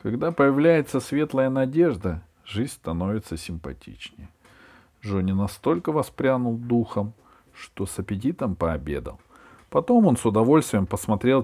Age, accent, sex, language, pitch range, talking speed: 40-59, native, male, Russian, 90-115 Hz, 105 wpm